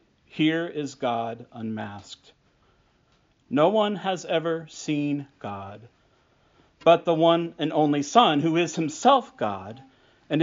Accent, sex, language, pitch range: American, male, English, 115-170 Hz